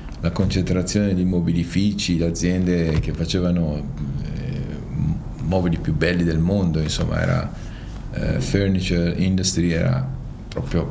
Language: Italian